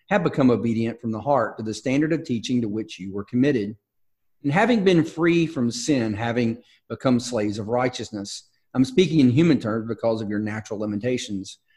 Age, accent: 40-59, American